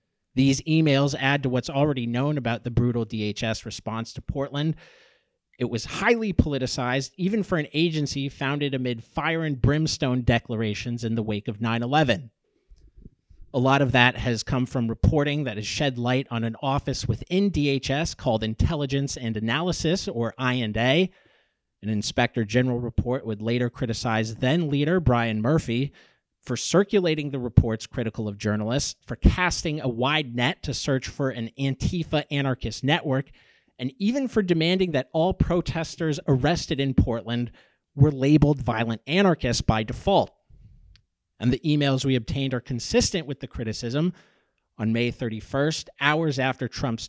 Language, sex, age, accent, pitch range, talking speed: English, male, 30-49, American, 115-150 Hz, 150 wpm